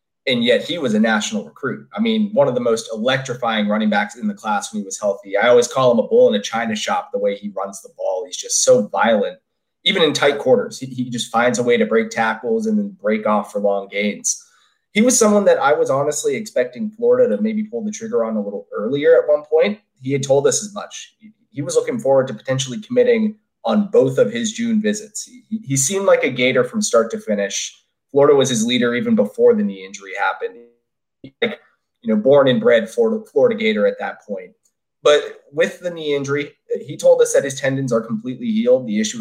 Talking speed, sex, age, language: 235 wpm, male, 20-39, English